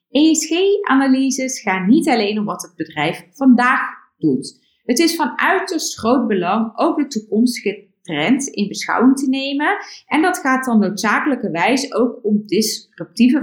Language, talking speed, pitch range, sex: Dutch, 145 wpm, 200-280 Hz, female